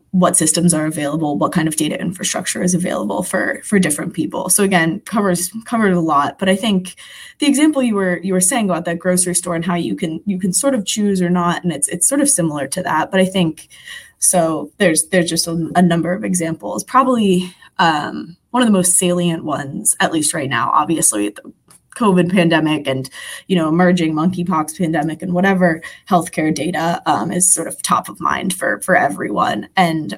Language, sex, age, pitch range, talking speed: English, female, 20-39, 165-190 Hz, 205 wpm